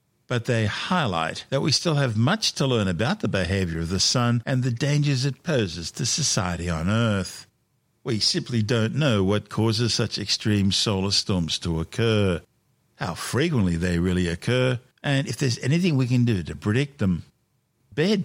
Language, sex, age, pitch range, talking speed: English, male, 50-69, 95-130 Hz, 175 wpm